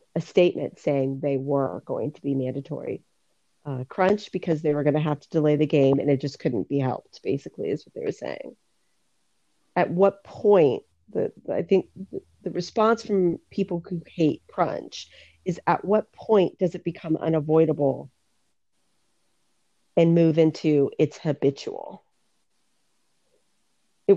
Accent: American